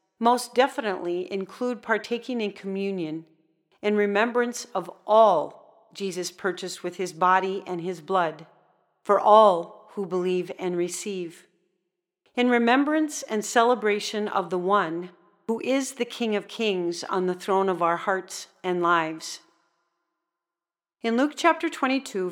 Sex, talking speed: female, 130 wpm